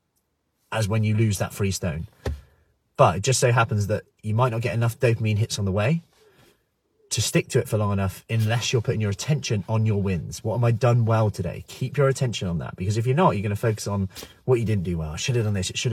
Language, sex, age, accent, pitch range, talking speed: English, male, 30-49, British, 105-130 Hz, 265 wpm